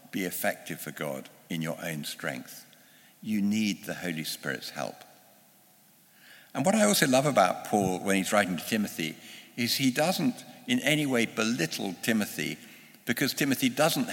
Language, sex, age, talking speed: English, male, 60-79, 155 wpm